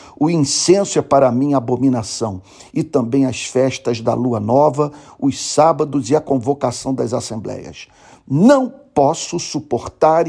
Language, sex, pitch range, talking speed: Portuguese, male, 125-155 Hz, 135 wpm